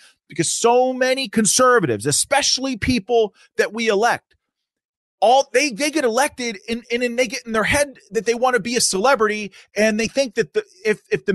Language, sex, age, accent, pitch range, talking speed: English, male, 30-49, American, 155-240 Hz, 195 wpm